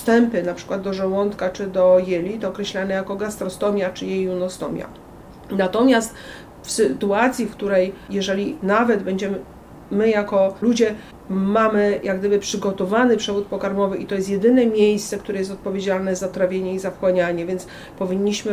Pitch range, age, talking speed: 185-205 Hz, 40-59, 140 wpm